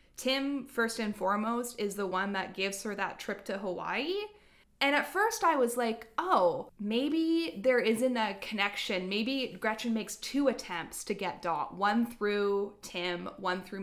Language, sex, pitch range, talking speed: English, female, 185-235 Hz, 170 wpm